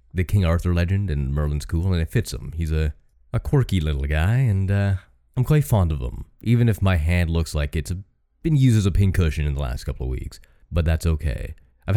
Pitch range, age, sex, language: 75-100 Hz, 30-49, male, English